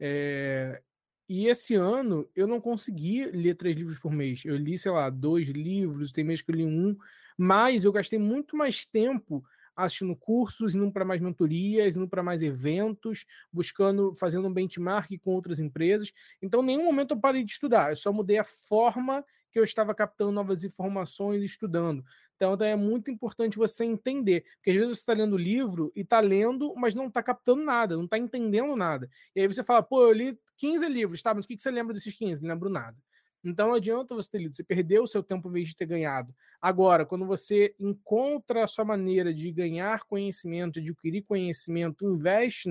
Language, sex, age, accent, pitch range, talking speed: Portuguese, male, 20-39, Brazilian, 170-225 Hz, 200 wpm